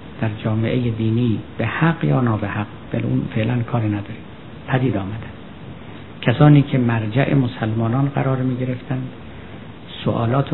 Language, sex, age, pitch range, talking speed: Persian, male, 50-69, 110-130 Hz, 120 wpm